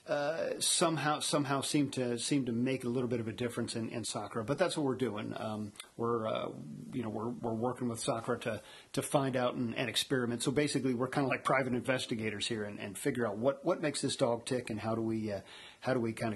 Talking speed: 245 wpm